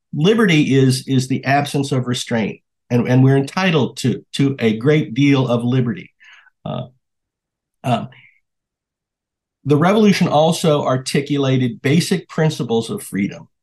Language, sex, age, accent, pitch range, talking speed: English, male, 50-69, American, 115-150 Hz, 125 wpm